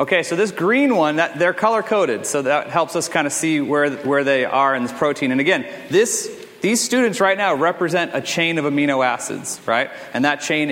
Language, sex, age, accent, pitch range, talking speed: English, male, 30-49, American, 145-185 Hz, 220 wpm